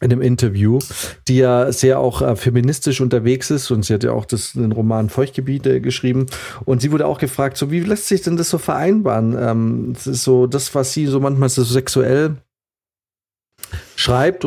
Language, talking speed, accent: German, 180 wpm, German